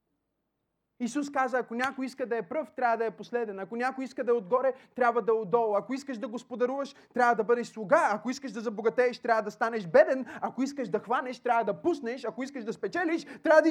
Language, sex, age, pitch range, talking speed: Bulgarian, male, 30-49, 210-270 Hz, 230 wpm